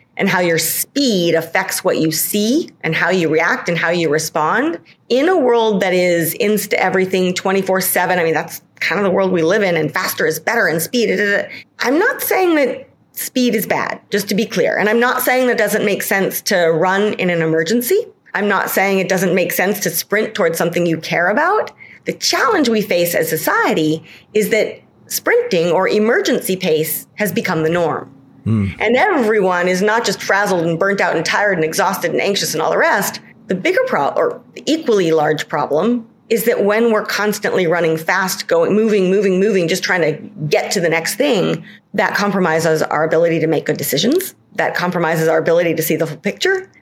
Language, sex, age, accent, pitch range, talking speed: English, female, 30-49, American, 165-220 Hz, 205 wpm